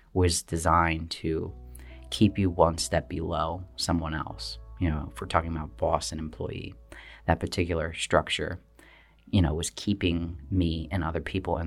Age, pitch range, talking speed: 30-49, 80-95 Hz, 160 wpm